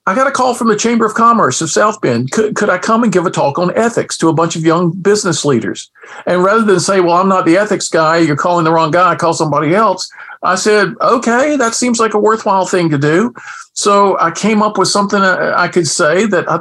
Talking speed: 255 wpm